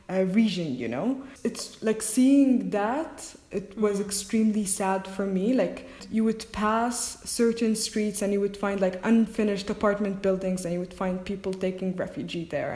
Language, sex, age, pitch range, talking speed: English, female, 20-39, 190-220 Hz, 170 wpm